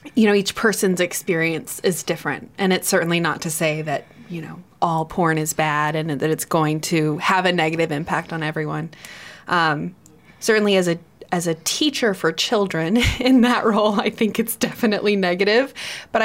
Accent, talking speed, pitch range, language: American, 175 wpm, 170-205 Hz, English